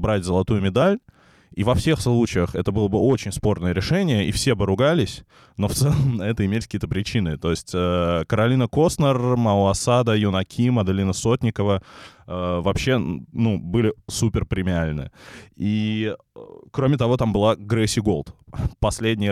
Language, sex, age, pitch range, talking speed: Russian, male, 20-39, 95-120 Hz, 145 wpm